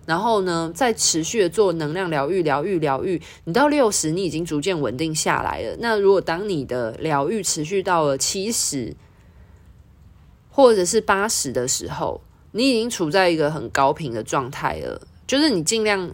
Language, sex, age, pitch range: Chinese, female, 20-39, 145-200 Hz